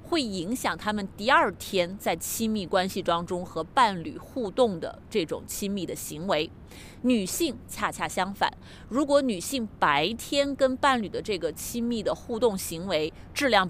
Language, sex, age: Chinese, female, 30-49